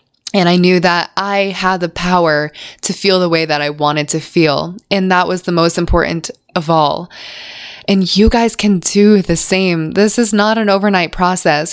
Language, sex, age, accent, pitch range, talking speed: English, female, 20-39, American, 170-205 Hz, 195 wpm